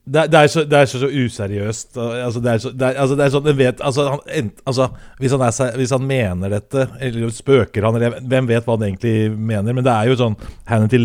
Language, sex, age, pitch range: English, male, 30-49, 110-130 Hz